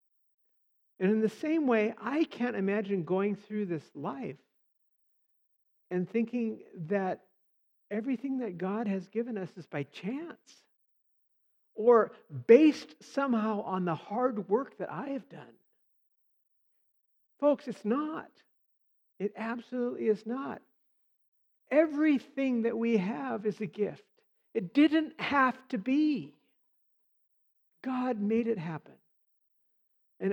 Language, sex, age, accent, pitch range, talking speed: English, male, 60-79, American, 175-255 Hz, 115 wpm